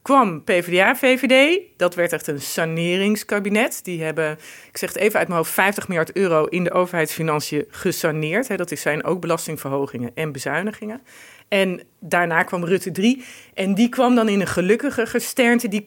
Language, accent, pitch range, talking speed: Dutch, Dutch, 160-220 Hz, 165 wpm